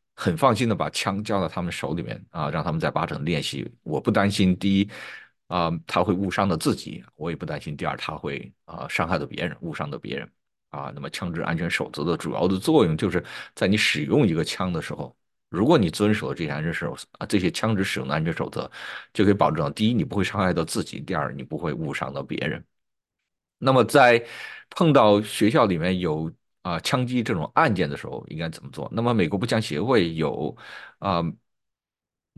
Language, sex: Chinese, male